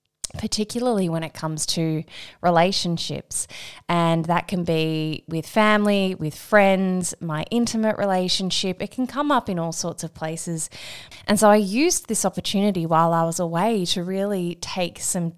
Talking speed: 155 wpm